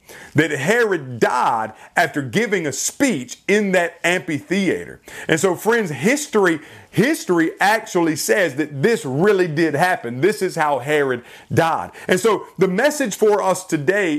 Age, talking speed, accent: 40-59, 145 wpm, American